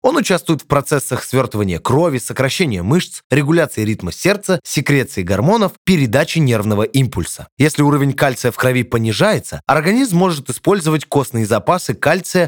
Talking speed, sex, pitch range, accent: 135 wpm, male, 110-155 Hz, native